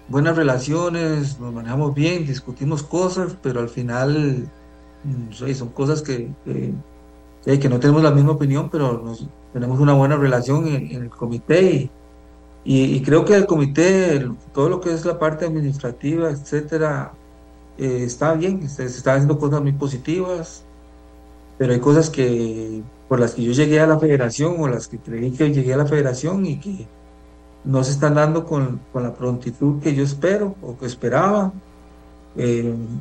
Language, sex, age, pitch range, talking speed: Spanish, male, 50-69, 120-150 Hz, 175 wpm